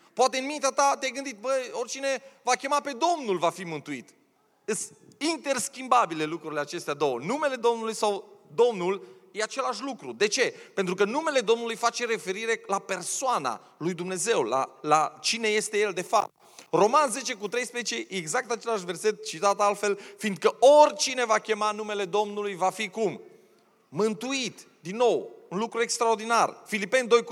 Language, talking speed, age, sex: Romanian, 155 wpm, 30-49, male